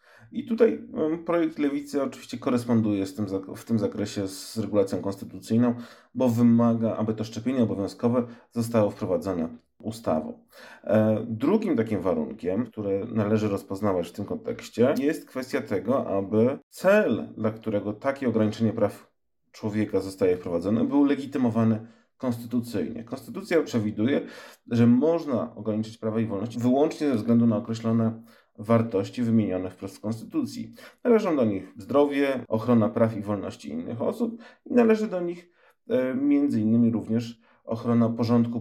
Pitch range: 110-145 Hz